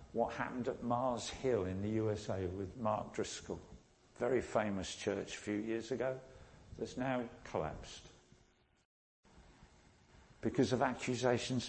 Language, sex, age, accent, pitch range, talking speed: English, male, 50-69, British, 95-125 Hz, 125 wpm